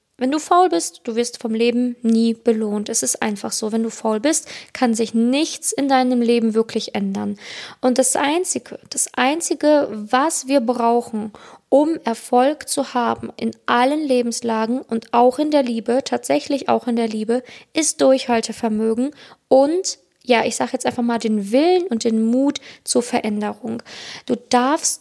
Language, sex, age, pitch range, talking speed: German, female, 20-39, 230-265 Hz, 165 wpm